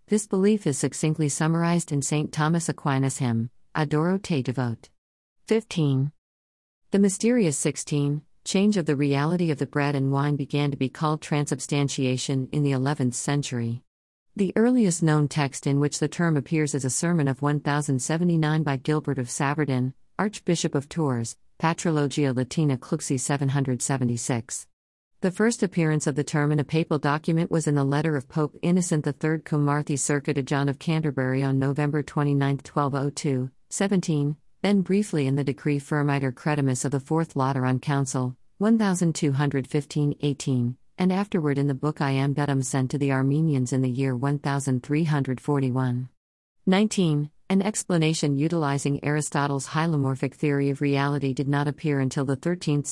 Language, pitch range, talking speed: Malayalam, 135-160 Hz, 155 wpm